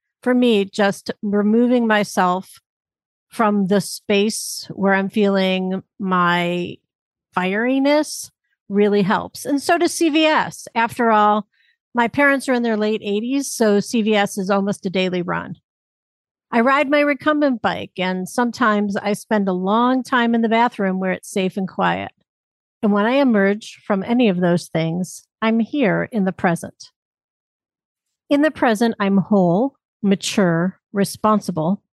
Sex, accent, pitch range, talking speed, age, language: female, American, 195-245 Hz, 145 wpm, 50-69, English